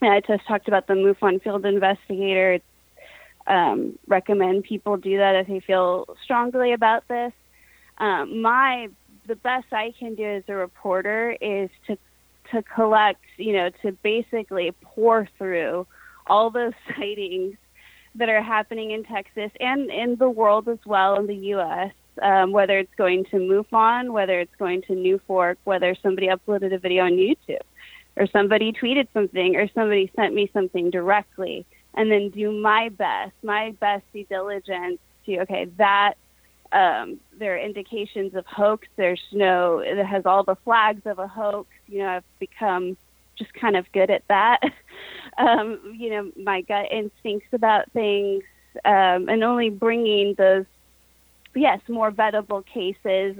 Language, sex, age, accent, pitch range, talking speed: English, female, 20-39, American, 190-225 Hz, 155 wpm